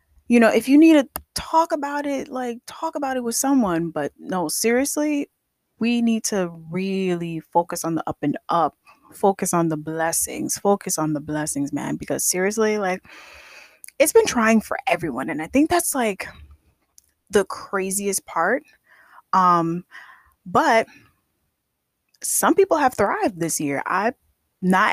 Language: English